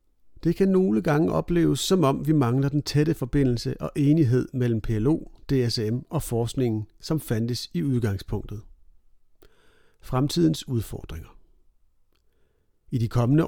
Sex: male